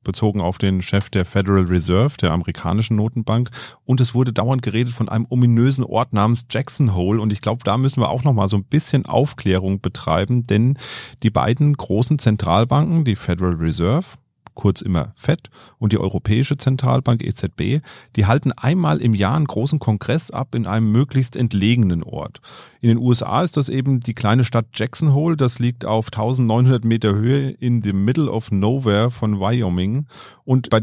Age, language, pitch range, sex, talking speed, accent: 30-49, German, 105-130 Hz, male, 175 wpm, German